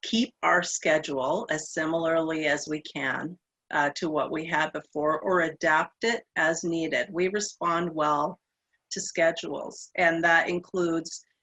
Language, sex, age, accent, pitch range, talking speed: English, female, 40-59, American, 155-205 Hz, 140 wpm